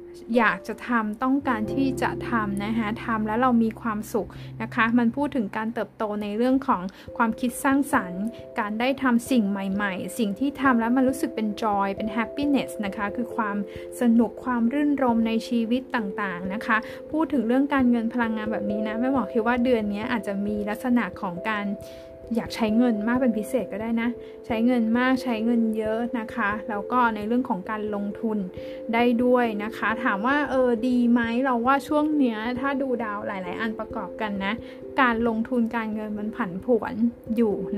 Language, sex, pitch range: Thai, female, 210-250 Hz